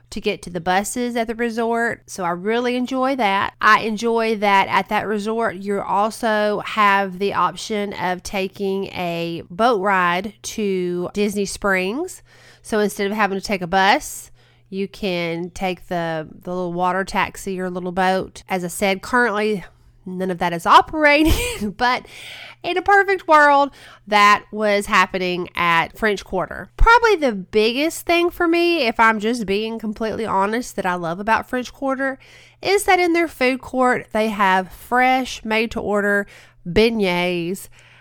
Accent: American